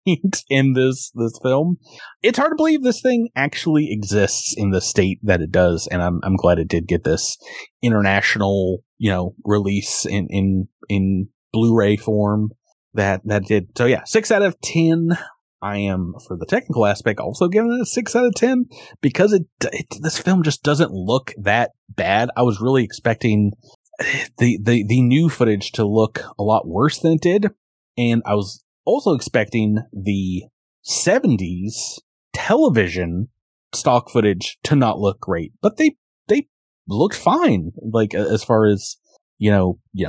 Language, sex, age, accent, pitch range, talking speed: English, male, 30-49, American, 95-130 Hz, 170 wpm